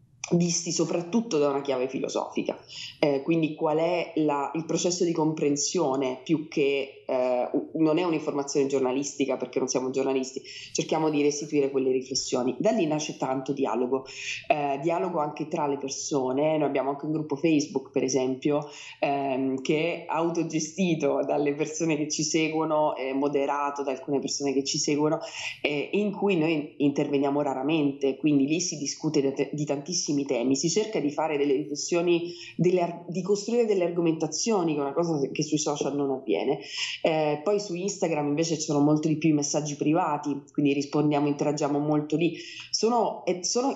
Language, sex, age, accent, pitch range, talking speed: Italian, female, 20-39, native, 140-165 Hz, 165 wpm